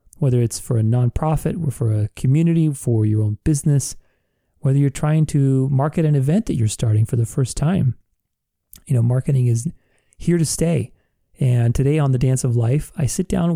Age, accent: 30-49, American